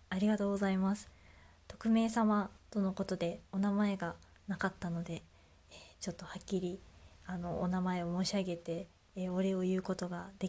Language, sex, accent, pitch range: Japanese, female, native, 185-235 Hz